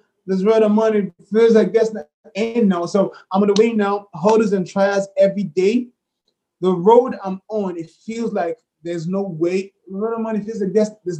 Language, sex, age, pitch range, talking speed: English, male, 20-39, 180-220 Hz, 190 wpm